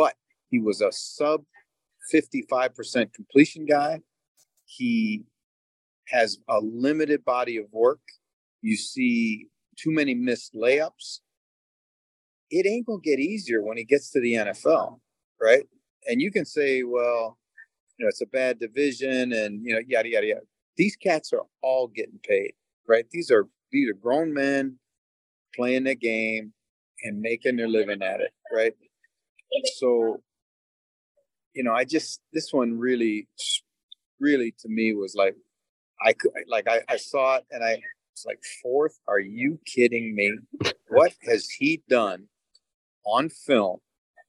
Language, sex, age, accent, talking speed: English, male, 40-59, American, 145 wpm